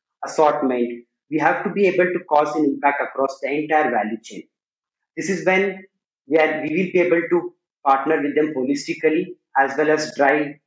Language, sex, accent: English, male, Indian